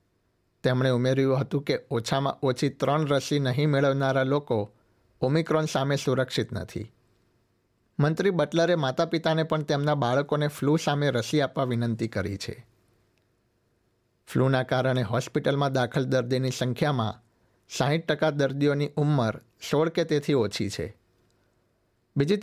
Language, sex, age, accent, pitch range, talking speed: Gujarati, male, 60-79, native, 115-145 Hz, 125 wpm